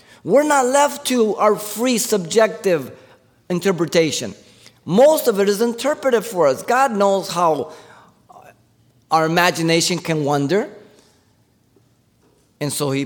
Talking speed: 115 wpm